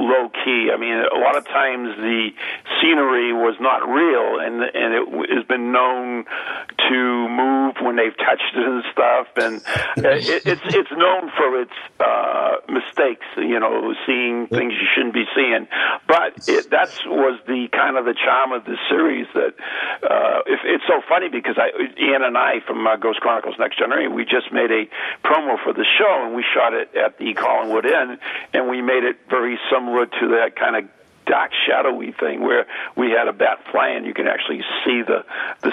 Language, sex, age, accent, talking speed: English, male, 50-69, American, 190 wpm